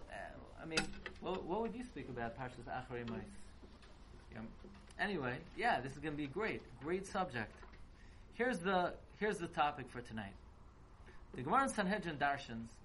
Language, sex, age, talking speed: English, male, 30-49, 160 wpm